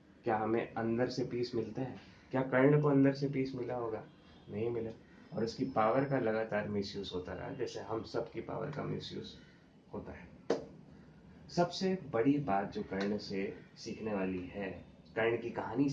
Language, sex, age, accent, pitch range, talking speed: Hindi, male, 20-39, native, 110-150 Hz, 175 wpm